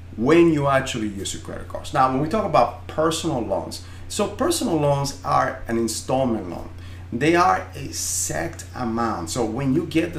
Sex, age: male, 30-49